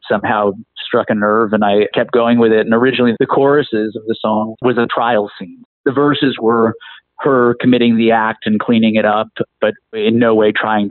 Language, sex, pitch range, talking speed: English, male, 110-125 Hz, 205 wpm